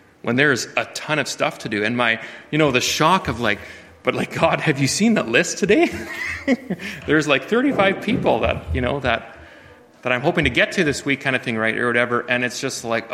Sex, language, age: male, English, 30-49